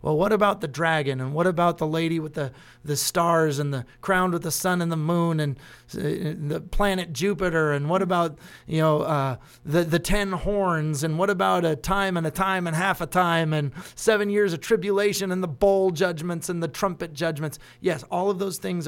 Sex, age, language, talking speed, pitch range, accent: male, 30-49, English, 215 wpm, 135-170 Hz, American